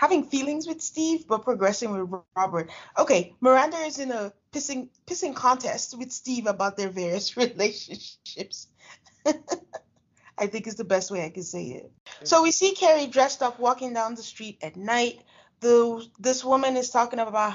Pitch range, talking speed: 185-240 Hz, 170 wpm